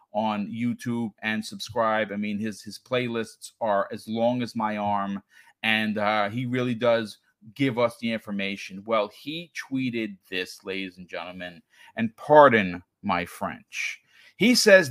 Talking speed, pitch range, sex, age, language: 150 wpm, 110-145 Hz, male, 40-59, English